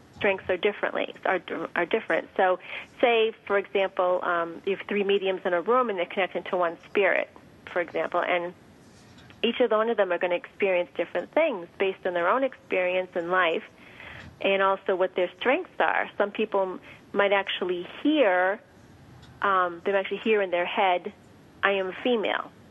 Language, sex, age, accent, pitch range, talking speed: English, female, 30-49, American, 180-210 Hz, 180 wpm